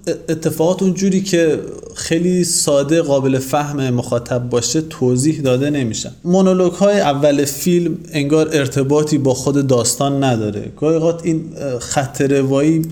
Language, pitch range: Persian, 130-160 Hz